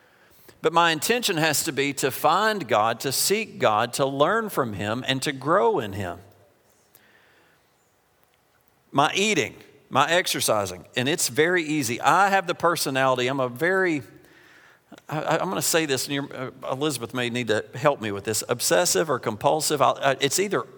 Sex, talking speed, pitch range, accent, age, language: male, 160 wpm, 120-155 Hz, American, 50-69, English